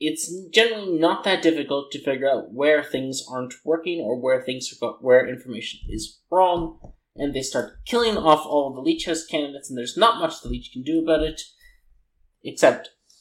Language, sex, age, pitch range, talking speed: English, male, 30-49, 130-170 Hz, 195 wpm